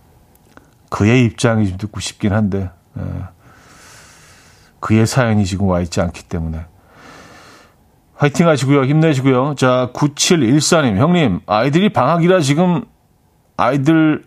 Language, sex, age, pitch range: Korean, male, 40-59, 100-140 Hz